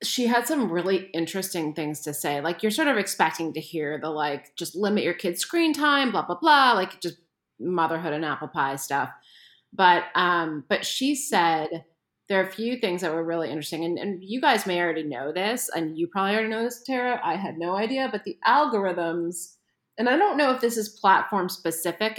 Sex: female